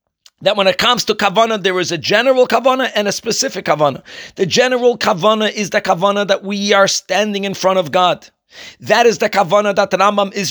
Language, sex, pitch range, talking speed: English, male, 190-245 Hz, 205 wpm